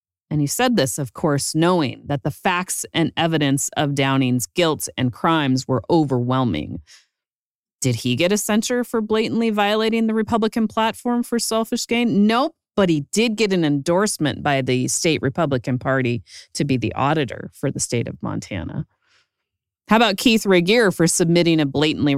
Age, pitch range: 30-49, 130-200 Hz